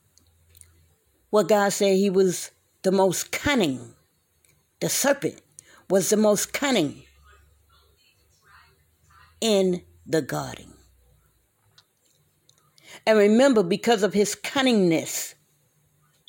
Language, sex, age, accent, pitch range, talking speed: English, female, 40-59, American, 155-210 Hz, 85 wpm